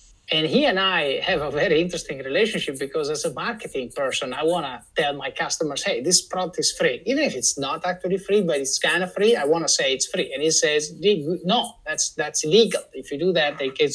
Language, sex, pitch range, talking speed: Italian, male, 160-245 Hz, 235 wpm